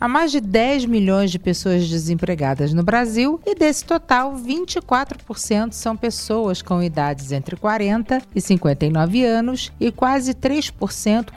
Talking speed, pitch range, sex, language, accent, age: 135 wpm, 170-230 Hz, female, Portuguese, Brazilian, 40-59